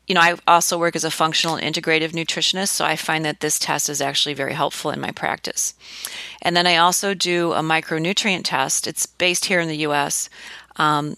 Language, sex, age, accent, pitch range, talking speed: English, female, 40-59, American, 145-170 Hz, 210 wpm